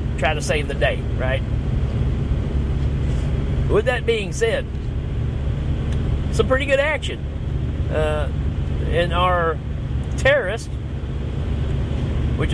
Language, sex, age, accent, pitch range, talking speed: English, male, 40-59, American, 70-80 Hz, 90 wpm